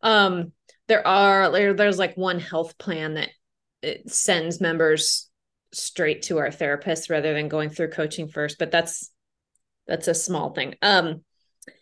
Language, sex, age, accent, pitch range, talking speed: Spanish, female, 30-49, American, 170-210 Hz, 150 wpm